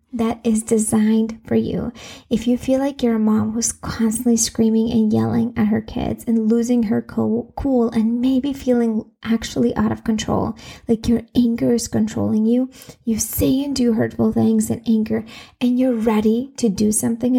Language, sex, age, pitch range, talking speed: English, female, 20-39, 220-240 Hz, 175 wpm